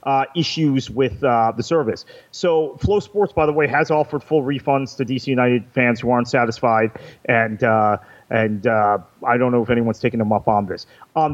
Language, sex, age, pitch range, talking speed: English, male, 30-49, 120-155 Hz, 200 wpm